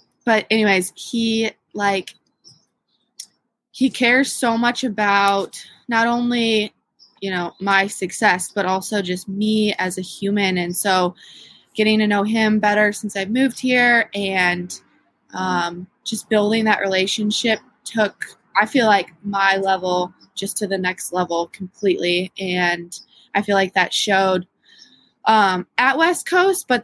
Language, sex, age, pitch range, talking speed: English, female, 20-39, 185-215 Hz, 140 wpm